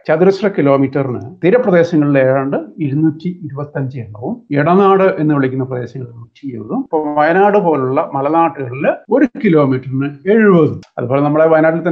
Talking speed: 115 wpm